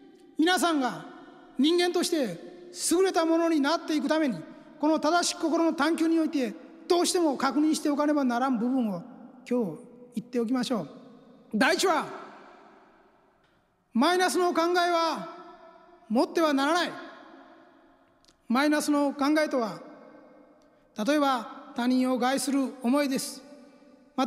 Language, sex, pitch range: Japanese, male, 250-320 Hz